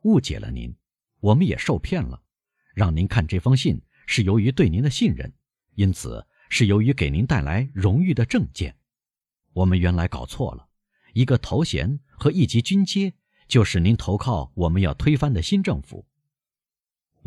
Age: 50-69